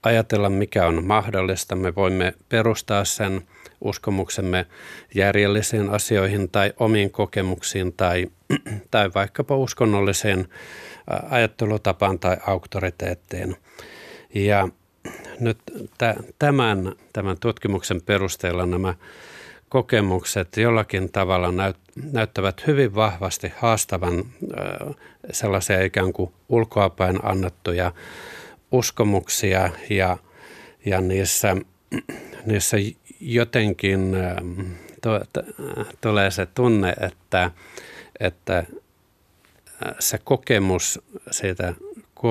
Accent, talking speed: native, 75 wpm